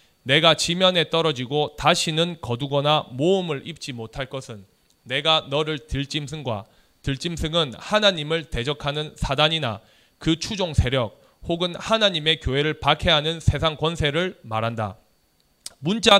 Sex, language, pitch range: male, Korean, 130-175 Hz